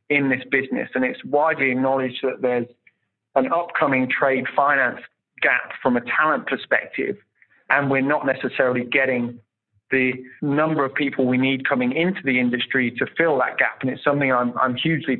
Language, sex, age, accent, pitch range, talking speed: English, male, 20-39, British, 125-140 Hz, 170 wpm